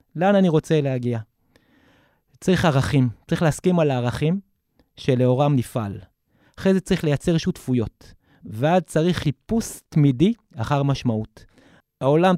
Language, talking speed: Hebrew, 115 wpm